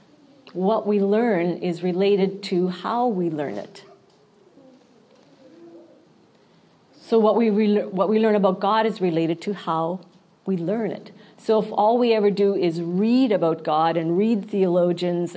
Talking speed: 150 wpm